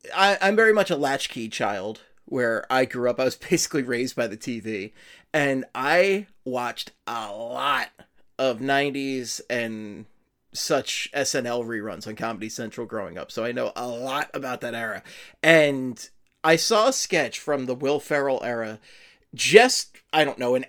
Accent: American